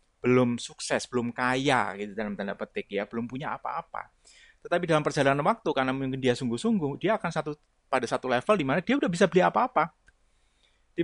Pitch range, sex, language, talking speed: 120-170 Hz, male, Indonesian, 185 wpm